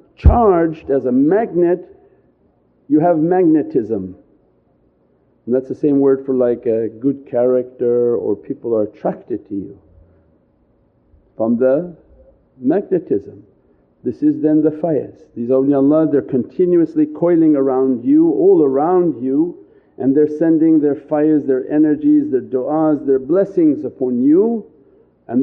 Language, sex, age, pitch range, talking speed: English, male, 50-69, 130-175 Hz, 130 wpm